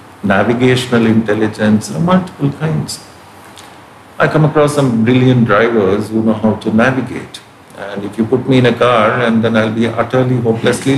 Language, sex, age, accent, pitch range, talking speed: English, male, 50-69, Indian, 105-130 Hz, 165 wpm